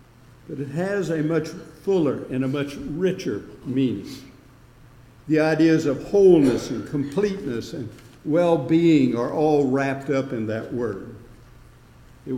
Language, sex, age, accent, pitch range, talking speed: English, male, 60-79, American, 130-170 Hz, 130 wpm